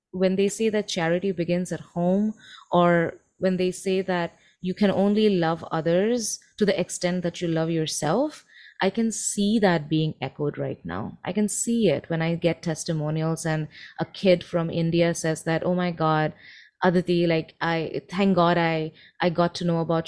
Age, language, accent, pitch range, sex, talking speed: 20-39, English, Indian, 165-195 Hz, female, 185 wpm